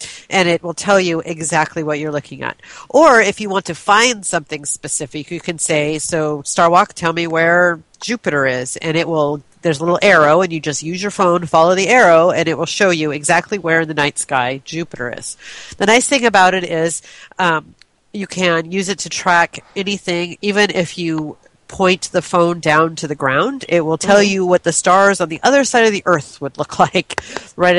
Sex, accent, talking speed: female, American, 215 wpm